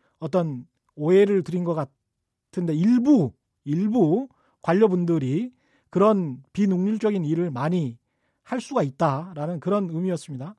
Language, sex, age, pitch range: Korean, male, 40-59, 165-235 Hz